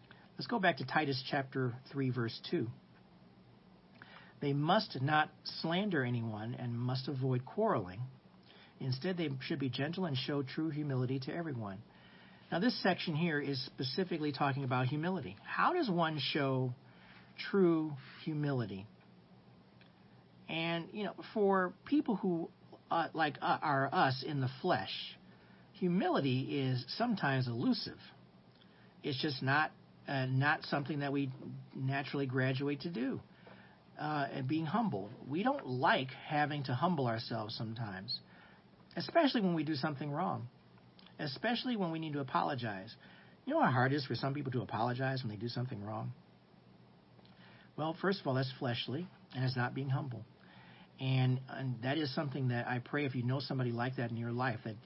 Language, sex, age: English, male, 50-69